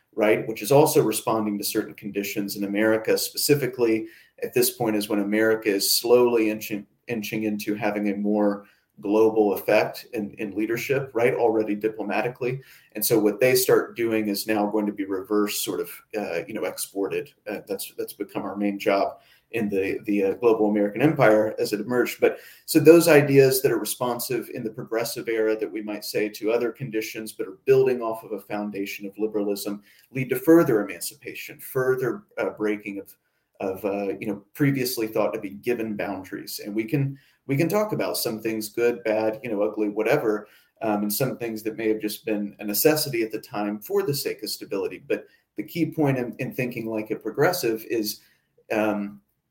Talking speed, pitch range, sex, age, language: 195 wpm, 105-130 Hz, male, 30-49, English